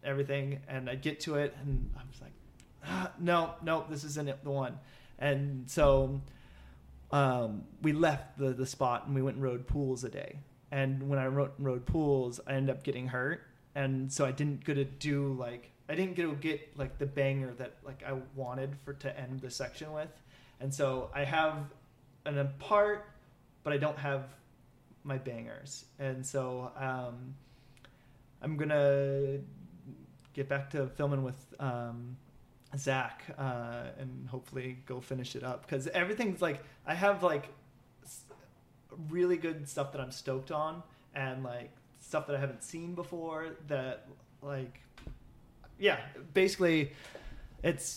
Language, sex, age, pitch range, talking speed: English, male, 30-49, 130-150 Hz, 160 wpm